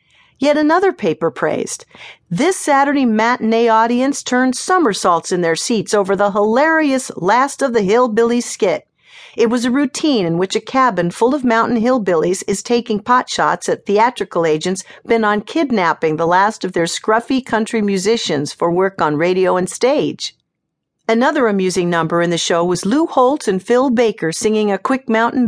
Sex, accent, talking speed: female, American, 170 wpm